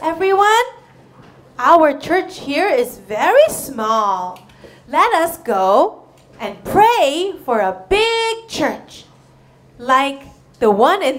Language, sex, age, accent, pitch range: Korean, female, 30-49, American, 190-290 Hz